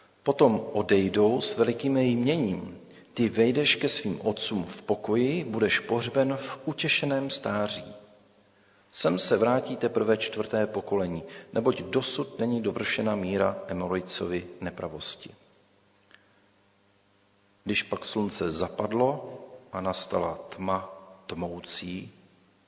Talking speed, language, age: 100 wpm, Czech, 40-59